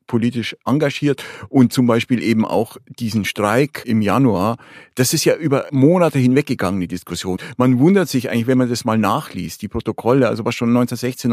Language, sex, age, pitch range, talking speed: German, male, 50-69, 110-130 Hz, 180 wpm